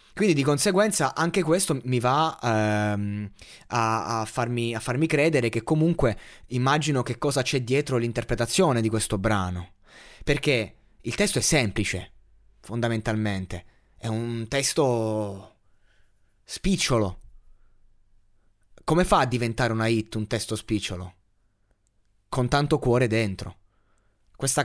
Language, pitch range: Italian, 100-135 Hz